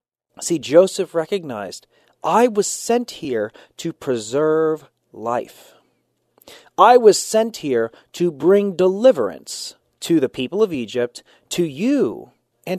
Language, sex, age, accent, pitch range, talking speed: English, male, 30-49, American, 170-260 Hz, 115 wpm